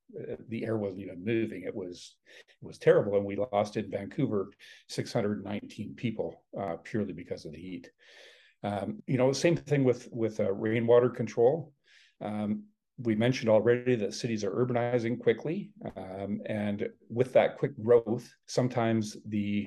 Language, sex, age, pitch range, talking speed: English, male, 50-69, 105-120 Hz, 155 wpm